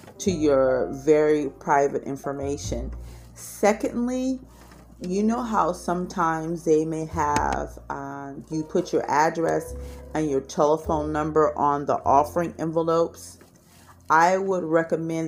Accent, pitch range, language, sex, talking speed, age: American, 140-170 Hz, English, female, 115 wpm, 40-59